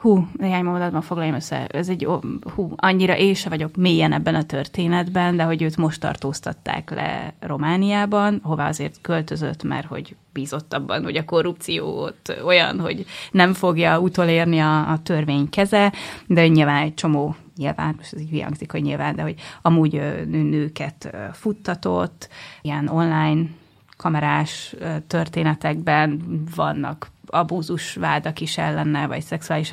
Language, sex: Hungarian, female